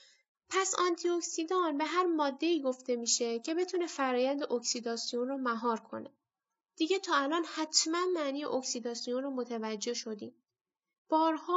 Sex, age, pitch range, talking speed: female, 10-29, 245-320 Hz, 125 wpm